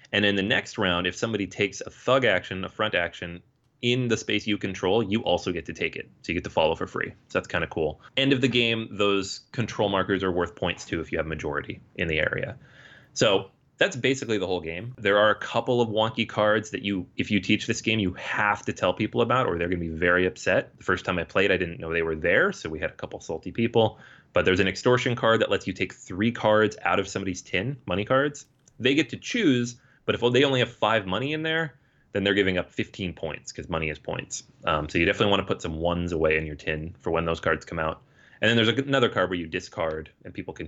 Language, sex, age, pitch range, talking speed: English, male, 30-49, 90-115 Hz, 260 wpm